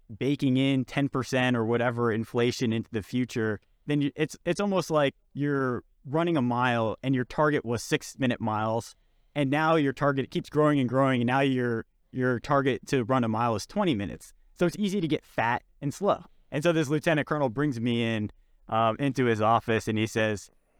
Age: 30-49